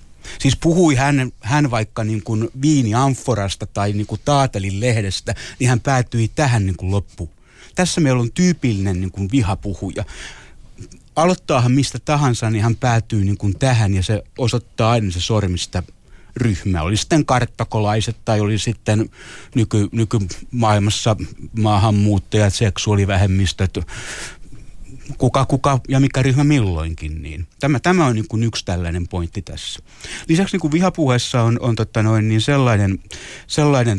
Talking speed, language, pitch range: 130 wpm, Finnish, 100-130 Hz